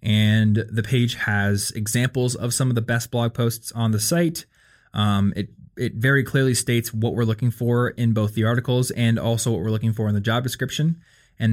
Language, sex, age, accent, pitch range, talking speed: English, male, 20-39, American, 110-135 Hz, 210 wpm